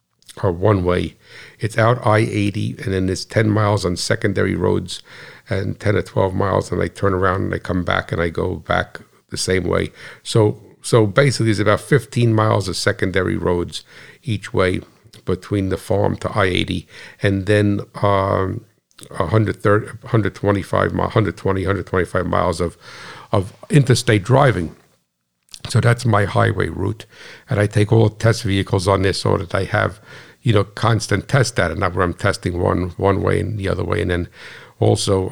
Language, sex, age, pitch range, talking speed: English, male, 60-79, 95-110 Hz, 170 wpm